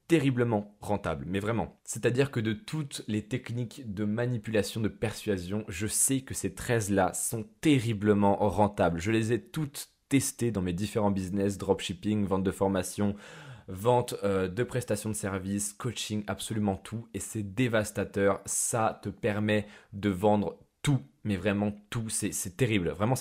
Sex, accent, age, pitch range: male, French, 20-39, 105-130 Hz